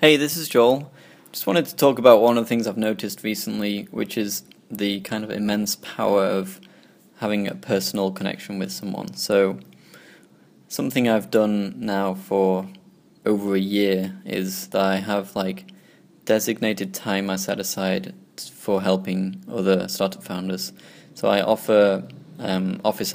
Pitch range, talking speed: 95-105 Hz, 155 wpm